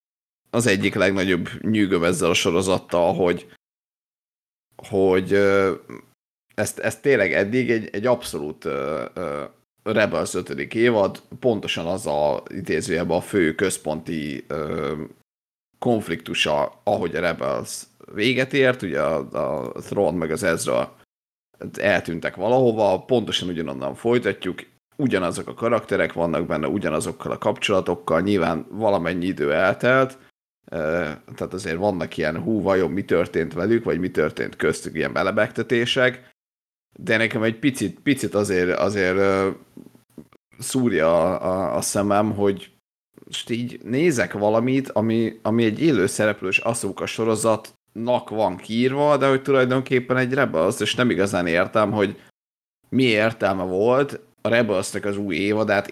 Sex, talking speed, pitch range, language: male, 120 wpm, 90-120 Hz, Hungarian